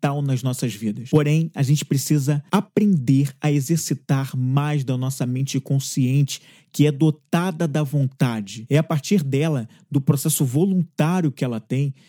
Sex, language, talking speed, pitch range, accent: male, Portuguese, 150 wpm, 145-185 Hz, Brazilian